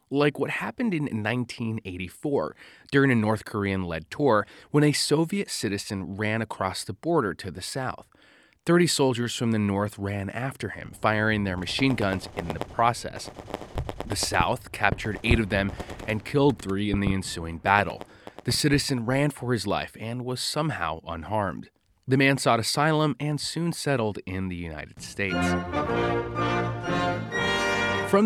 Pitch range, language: 100-135 Hz, English